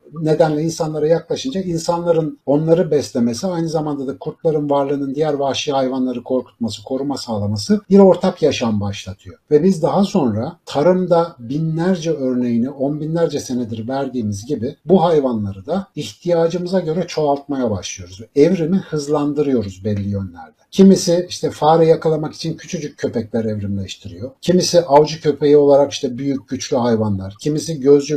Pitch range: 125-165 Hz